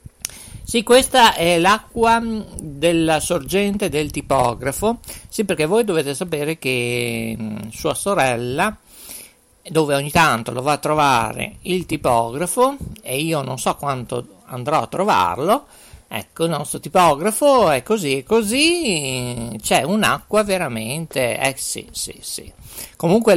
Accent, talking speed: native, 125 wpm